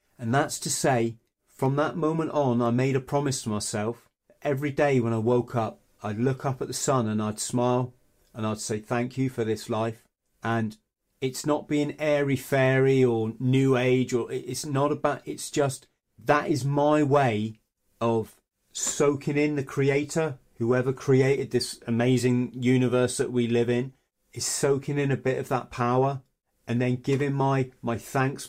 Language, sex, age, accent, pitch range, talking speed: English, male, 30-49, British, 120-145 Hz, 180 wpm